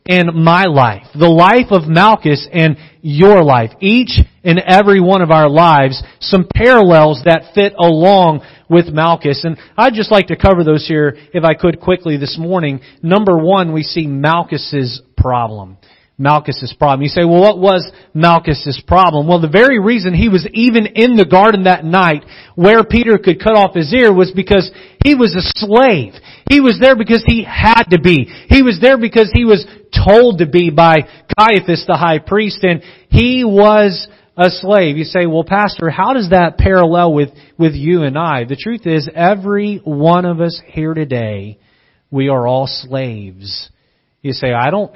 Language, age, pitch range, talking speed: English, 40-59, 145-195 Hz, 180 wpm